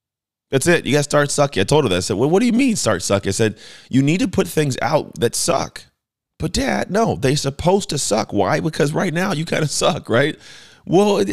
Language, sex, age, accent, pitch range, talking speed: English, male, 30-49, American, 95-135 Hz, 250 wpm